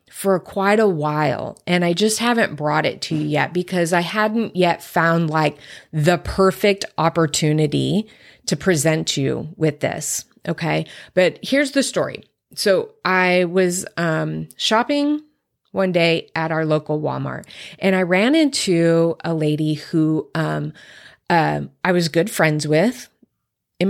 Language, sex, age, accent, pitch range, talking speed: English, female, 30-49, American, 155-205 Hz, 145 wpm